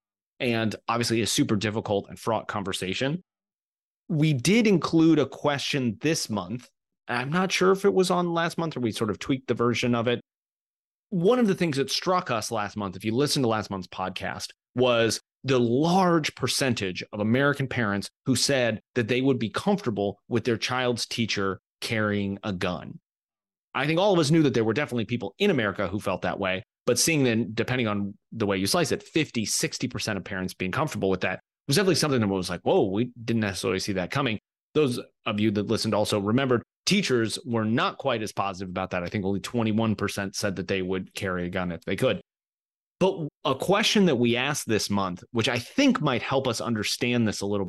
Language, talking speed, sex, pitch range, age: English, 210 wpm, male, 100-140 Hz, 30-49